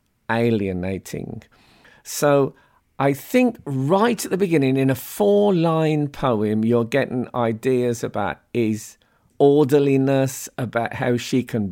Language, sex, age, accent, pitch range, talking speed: English, male, 50-69, British, 110-140 Hz, 115 wpm